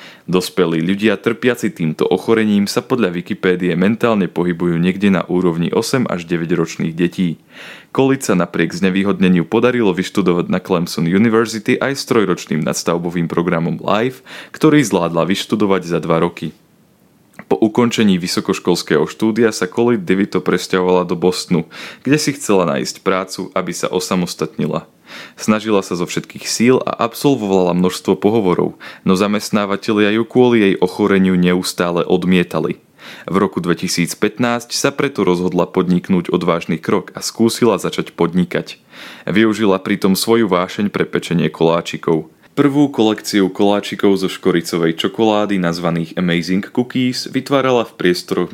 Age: 20-39